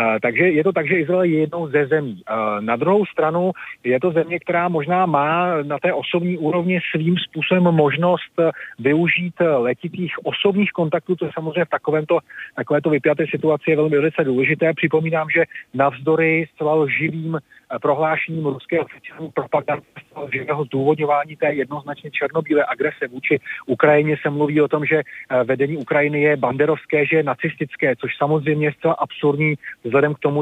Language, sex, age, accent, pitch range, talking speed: Czech, male, 40-59, native, 140-160 Hz, 155 wpm